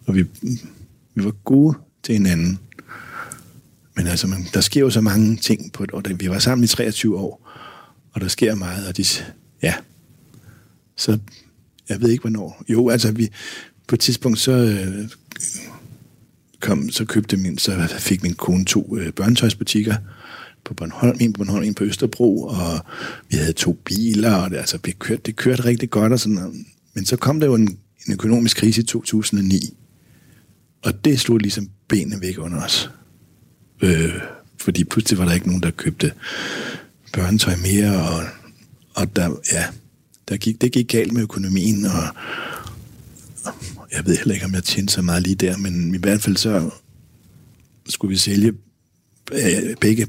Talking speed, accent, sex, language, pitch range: 170 wpm, native, male, Danish, 95-115 Hz